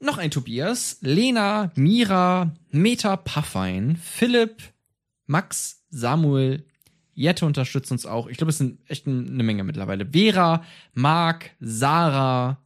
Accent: German